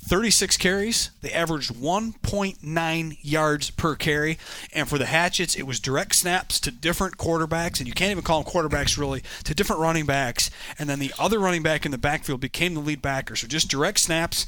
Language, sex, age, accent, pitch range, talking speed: English, male, 30-49, American, 135-170 Hz, 200 wpm